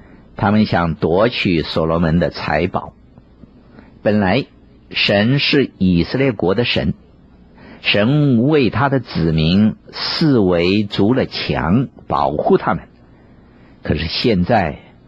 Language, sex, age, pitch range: Chinese, male, 50-69, 70-110 Hz